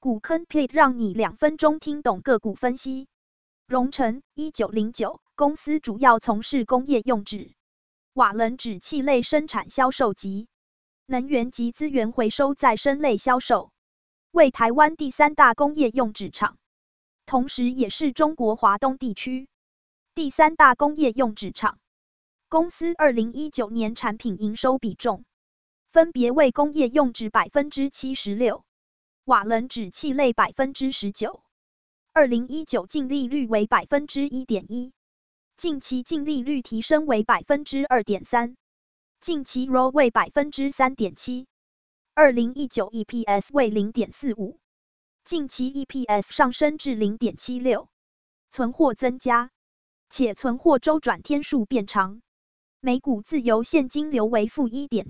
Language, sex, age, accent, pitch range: Chinese, female, 20-39, American, 230-285 Hz